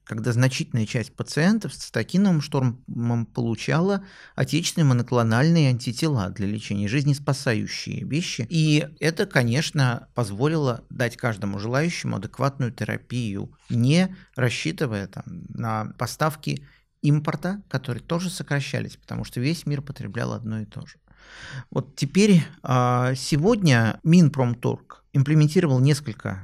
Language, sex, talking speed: Russian, male, 105 wpm